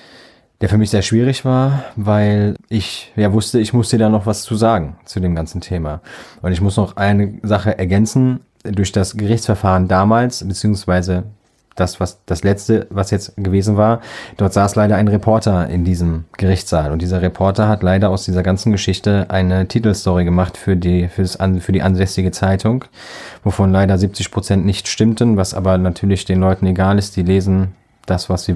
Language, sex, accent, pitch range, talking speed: German, male, German, 95-110 Hz, 185 wpm